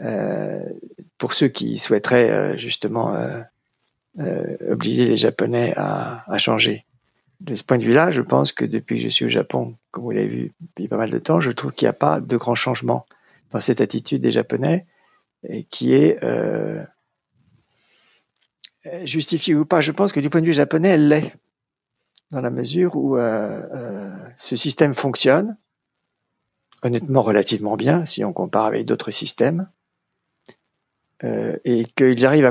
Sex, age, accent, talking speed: male, 50-69, French, 165 wpm